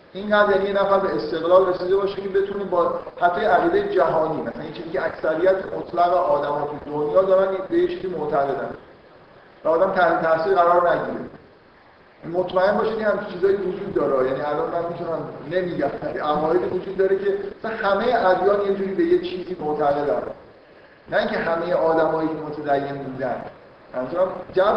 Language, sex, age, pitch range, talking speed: Persian, male, 50-69, 150-195 Hz, 155 wpm